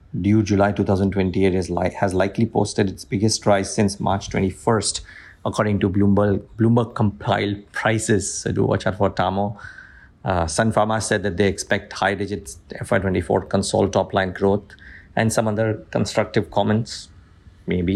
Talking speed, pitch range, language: 155 wpm, 95-110 Hz, English